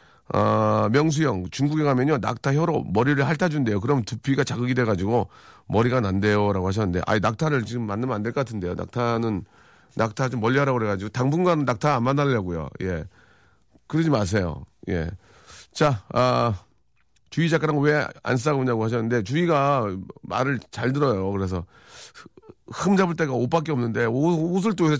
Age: 40-59